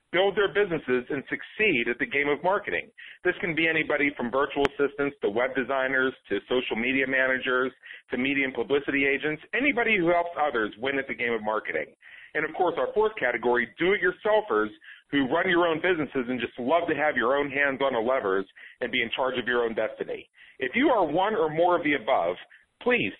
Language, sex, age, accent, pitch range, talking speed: English, male, 40-59, American, 135-185 Hz, 205 wpm